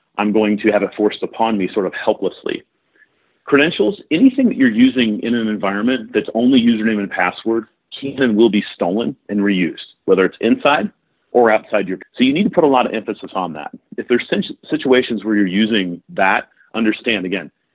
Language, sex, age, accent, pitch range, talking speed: English, male, 40-59, American, 95-115 Hz, 195 wpm